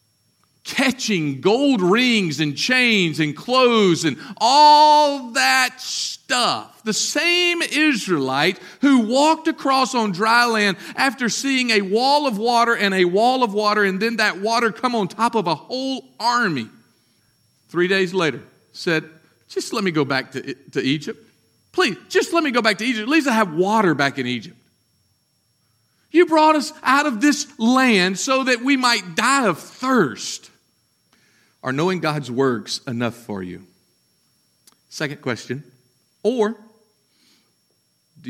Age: 50-69